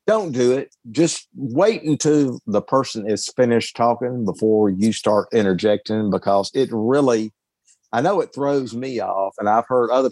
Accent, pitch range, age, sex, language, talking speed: American, 95-120 Hz, 50-69, male, English, 165 wpm